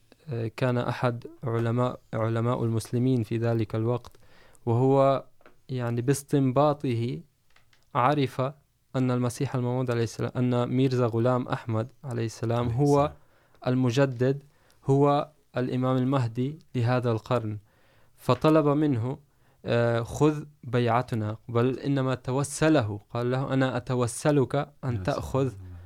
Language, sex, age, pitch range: Urdu, male, 20-39, 120-135 Hz